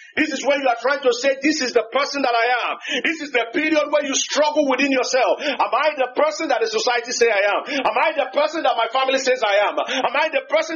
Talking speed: 270 wpm